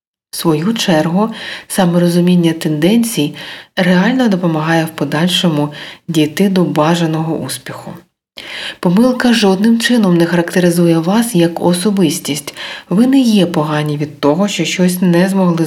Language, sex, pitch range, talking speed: Ukrainian, female, 155-195 Hz, 120 wpm